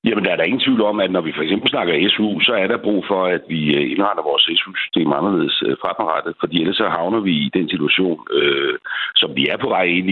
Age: 60-79